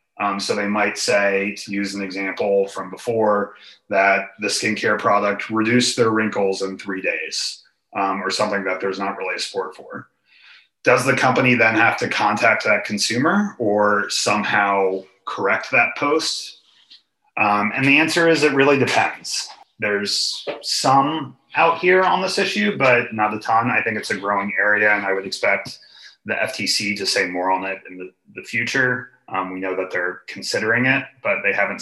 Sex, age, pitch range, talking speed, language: male, 30-49, 100-125 Hz, 180 wpm, English